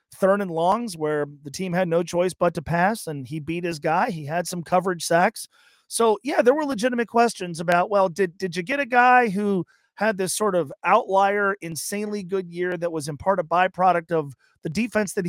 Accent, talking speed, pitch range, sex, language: American, 215 wpm, 150-190 Hz, male, English